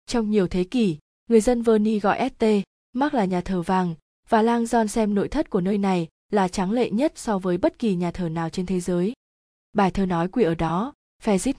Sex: female